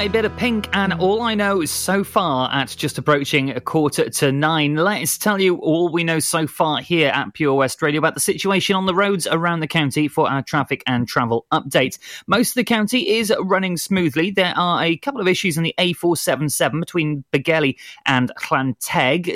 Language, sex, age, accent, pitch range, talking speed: English, male, 30-49, British, 135-175 Hz, 200 wpm